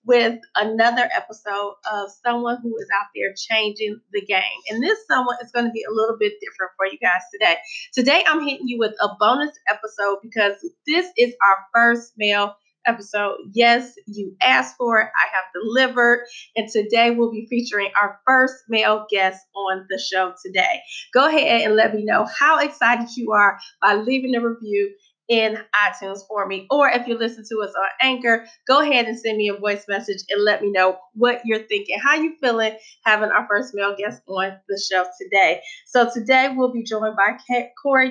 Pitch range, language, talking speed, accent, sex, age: 205-255 Hz, English, 195 wpm, American, female, 30-49